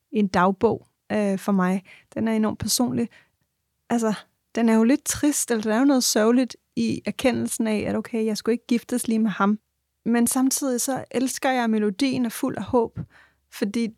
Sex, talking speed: female, 195 wpm